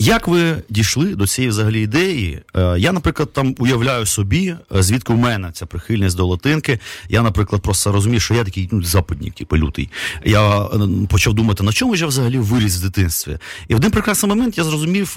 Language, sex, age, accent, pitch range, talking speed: Ukrainian, male, 30-49, native, 100-140 Hz, 200 wpm